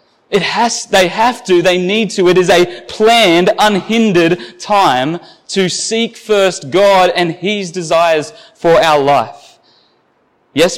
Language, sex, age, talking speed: English, male, 20-39, 140 wpm